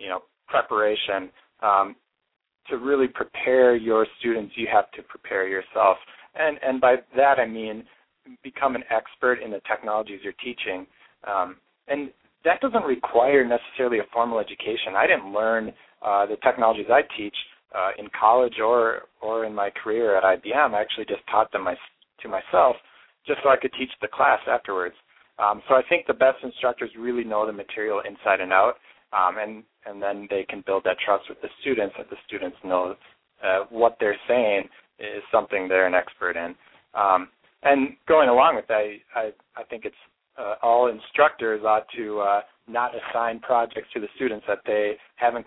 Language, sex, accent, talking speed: English, male, American, 180 wpm